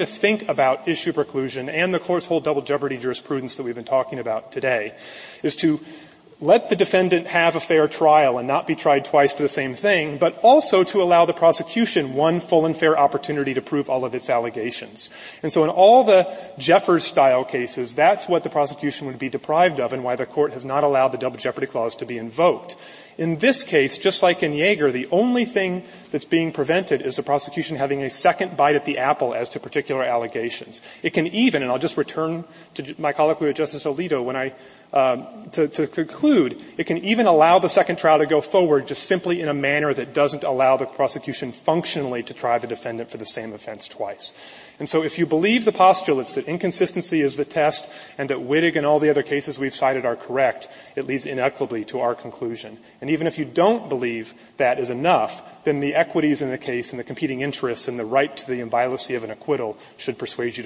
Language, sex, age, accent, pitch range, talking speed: English, male, 30-49, American, 135-170 Hz, 215 wpm